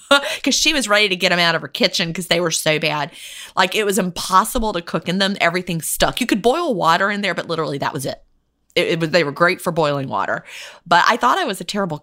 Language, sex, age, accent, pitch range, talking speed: English, female, 30-49, American, 160-210 Hz, 265 wpm